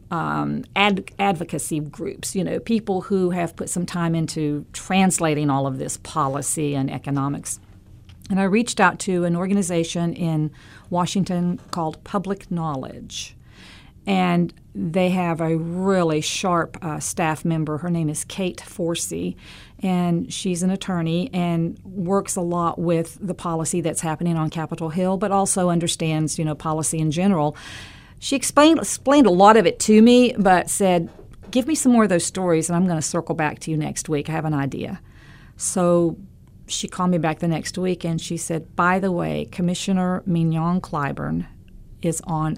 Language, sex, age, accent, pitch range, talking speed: English, female, 50-69, American, 150-180 Hz, 170 wpm